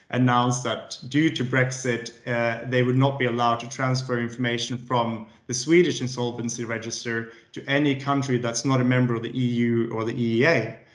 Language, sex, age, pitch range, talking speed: English, male, 20-39, 115-130 Hz, 175 wpm